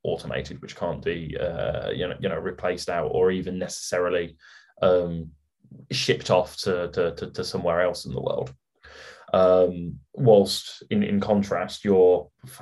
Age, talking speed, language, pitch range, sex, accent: 20-39, 150 wpm, English, 90-105 Hz, male, British